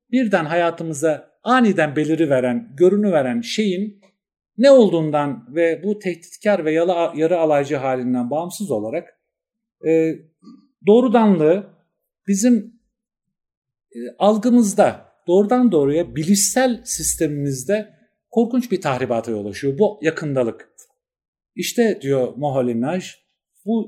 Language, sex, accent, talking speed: Turkish, male, native, 95 wpm